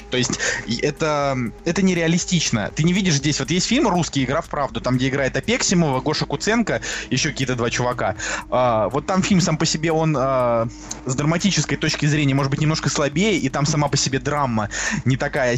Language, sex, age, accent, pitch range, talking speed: Russian, male, 20-39, native, 130-170 Hz, 195 wpm